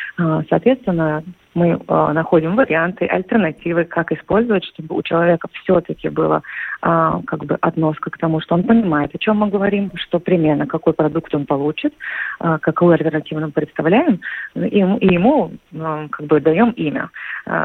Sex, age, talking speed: female, 30-49, 140 wpm